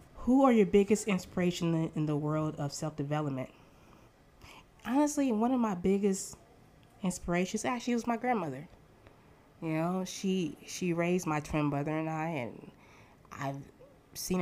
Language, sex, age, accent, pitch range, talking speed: English, female, 20-39, American, 140-175 Hz, 135 wpm